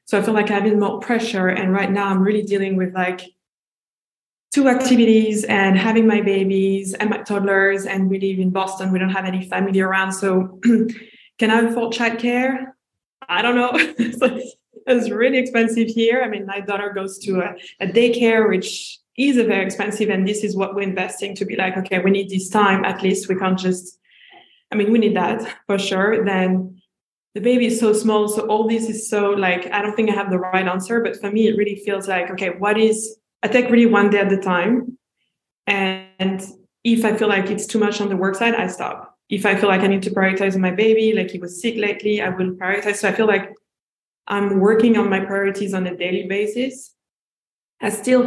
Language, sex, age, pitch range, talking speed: English, female, 20-39, 190-220 Hz, 220 wpm